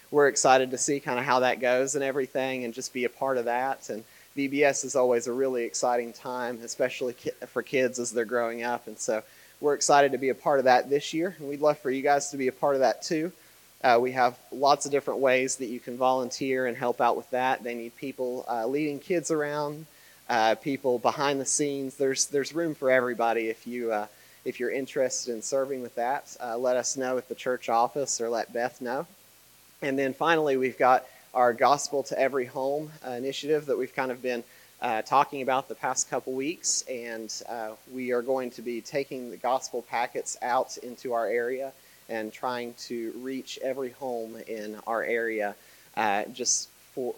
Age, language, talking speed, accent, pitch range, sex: 30-49, English, 205 wpm, American, 115-135 Hz, male